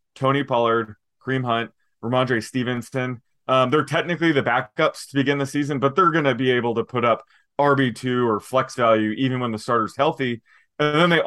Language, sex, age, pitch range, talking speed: English, male, 20-39, 115-140 Hz, 190 wpm